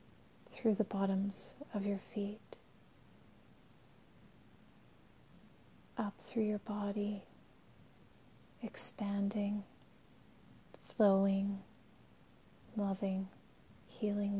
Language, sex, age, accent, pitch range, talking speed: English, female, 40-59, American, 200-215 Hz, 60 wpm